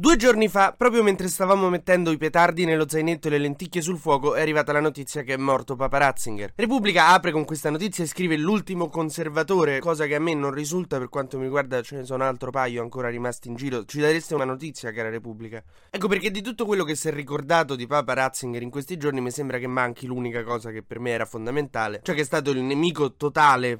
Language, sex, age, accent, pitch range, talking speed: Italian, male, 20-39, native, 125-160 Hz, 230 wpm